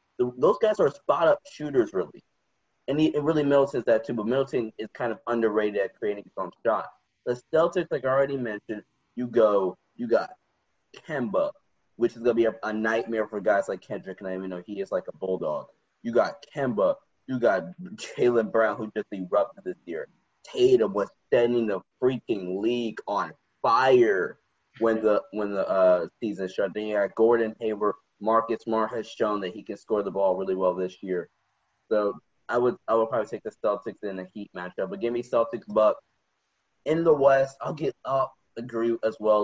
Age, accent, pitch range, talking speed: 20-39, American, 110-155 Hz, 200 wpm